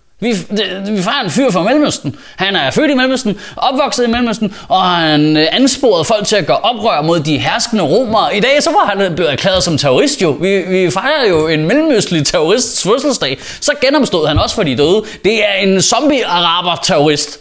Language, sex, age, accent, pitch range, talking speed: Danish, male, 20-39, native, 170-235 Hz, 195 wpm